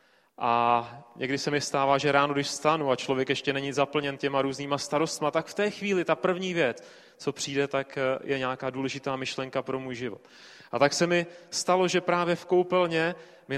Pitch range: 140-180 Hz